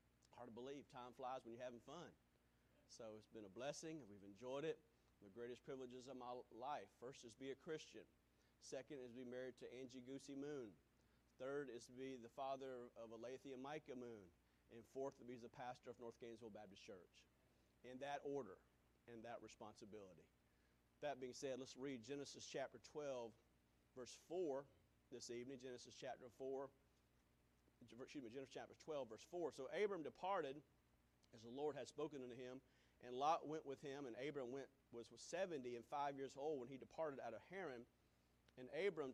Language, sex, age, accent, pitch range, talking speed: English, male, 40-59, American, 105-140 Hz, 185 wpm